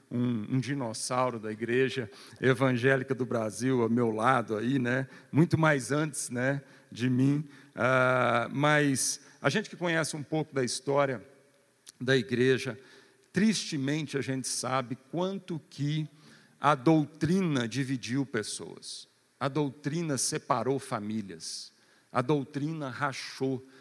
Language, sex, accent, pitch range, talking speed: Portuguese, male, Brazilian, 125-150 Hz, 120 wpm